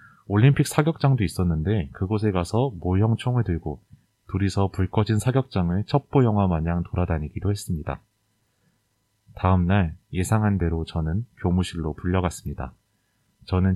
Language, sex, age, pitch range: Korean, male, 30-49, 90-110 Hz